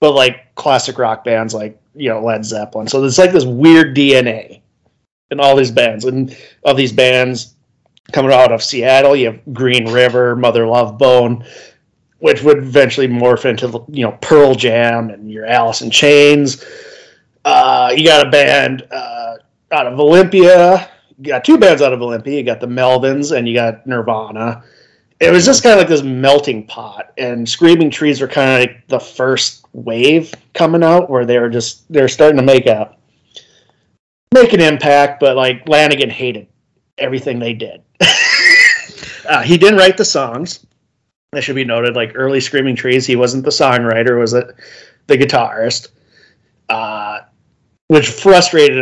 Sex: male